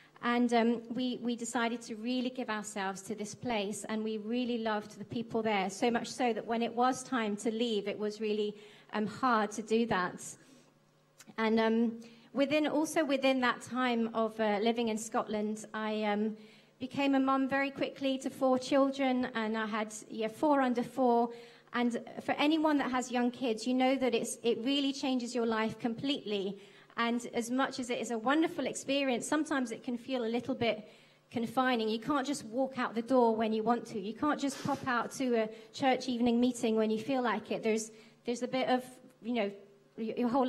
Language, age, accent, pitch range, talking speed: English, 30-49, British, 225-270 Hz, 200 wpm